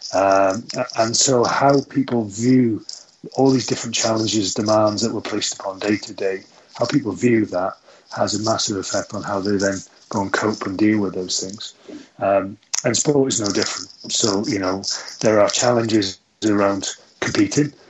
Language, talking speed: English, 175 wpm